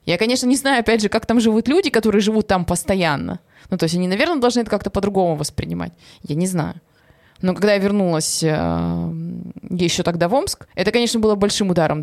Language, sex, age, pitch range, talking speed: Russian, female, 20-39, 175-220 Hz, 200 wpm